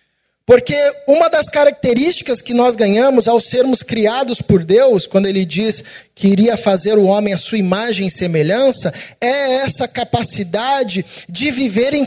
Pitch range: 190-255 Hz